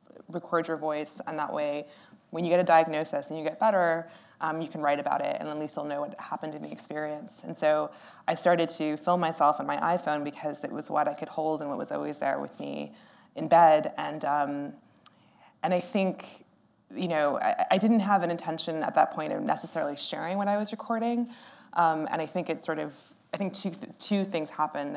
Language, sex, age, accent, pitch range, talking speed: English, female, 20-39, American, 150-180 Hz, 225 wpm